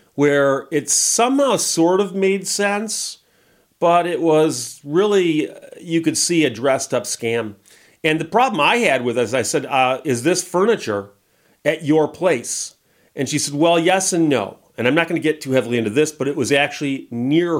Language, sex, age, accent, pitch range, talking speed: English, male, 40-59, American, 120-160 Hz, 190 wpm